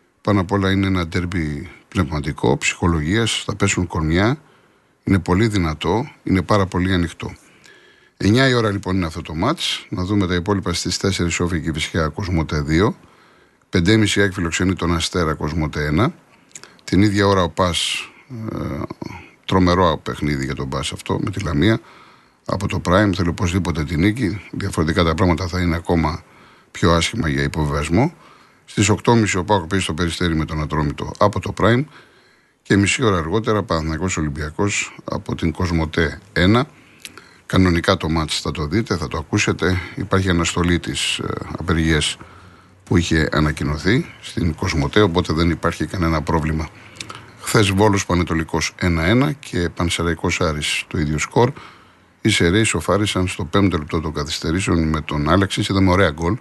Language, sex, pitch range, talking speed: Greek, male, 80-100 Hz, 155 wpm